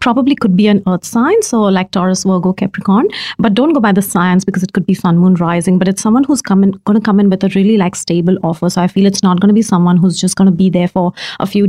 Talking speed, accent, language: 295 wpm, Indian, English